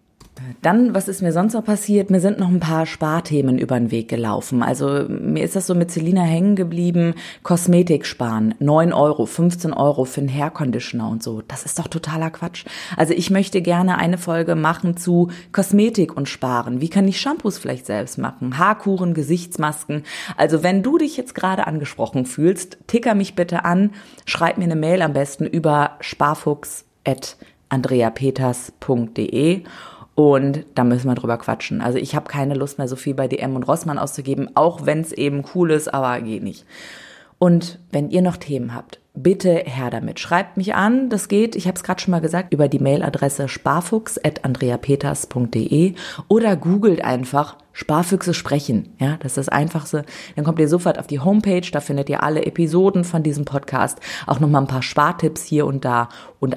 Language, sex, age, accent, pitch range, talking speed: German, female, 30-49, German, 135-180 Hz, 180 wpm